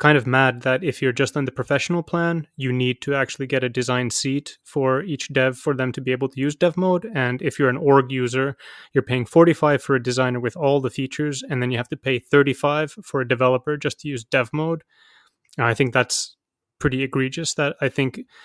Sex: male